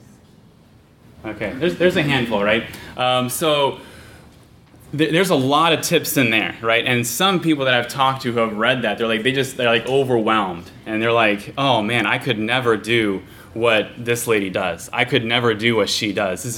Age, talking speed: 20-39, 205 wpm